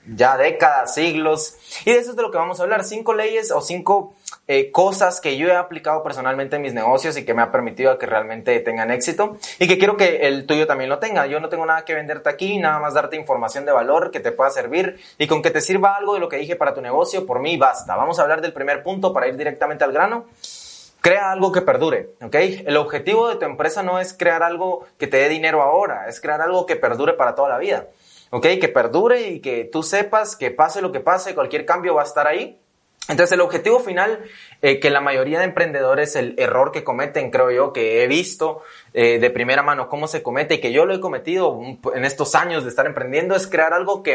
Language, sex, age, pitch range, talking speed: Spanish, male, 20-39, 150-210 Hz, 240 wpm